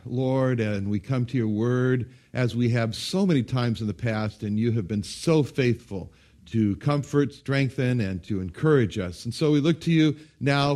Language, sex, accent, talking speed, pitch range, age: English, male, American, 200 wpm, 115-165 Hz, 60-79